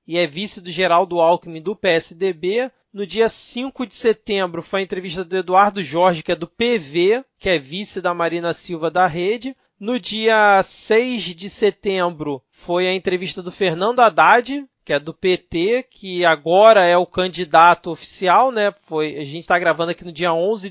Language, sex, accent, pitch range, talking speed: Portuguese, male, Brazilian, 175-215 Hz, 180 wpm